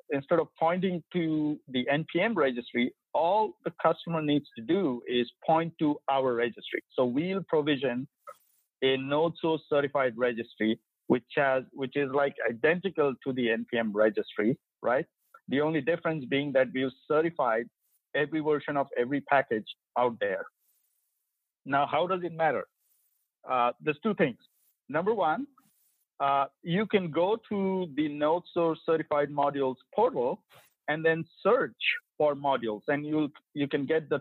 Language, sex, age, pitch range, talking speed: English, male, 50-69, 125-160 Hz, 150 wpm